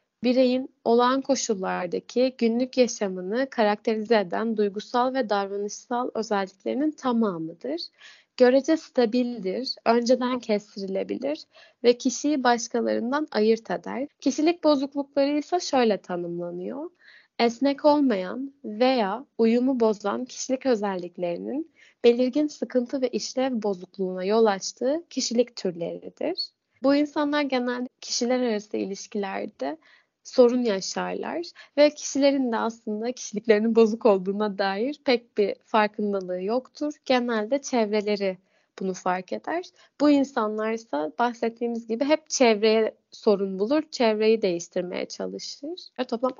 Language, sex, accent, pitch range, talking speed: Turkish, female, native, 210-270 Hz, 105 wpm